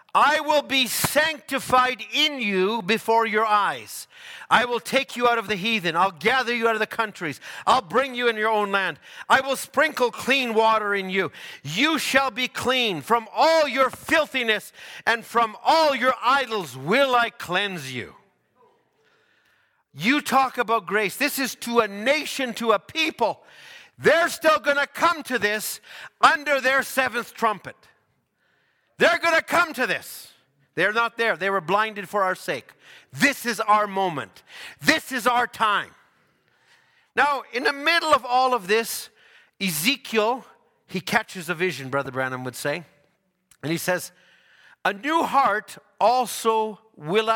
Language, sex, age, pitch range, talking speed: English, male, 50-69, 205-275 Hz, 160 wpm